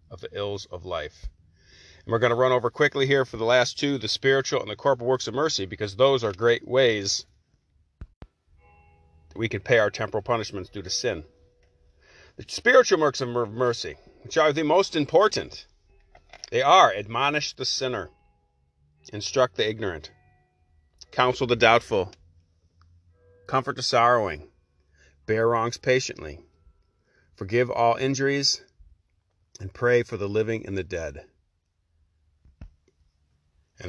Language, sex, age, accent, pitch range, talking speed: English, male, 40-59, American, 85-130 Hz, 140 wpm